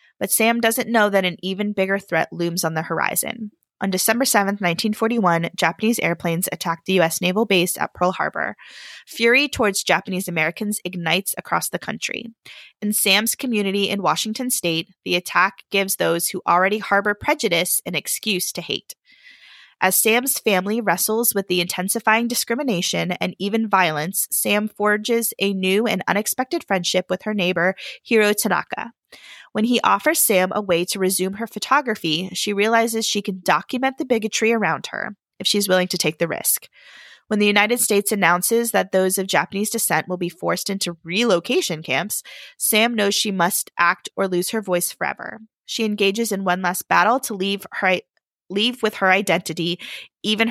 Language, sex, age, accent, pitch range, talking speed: English, female, 20-39, American, 180-225 Hz, 170 wpm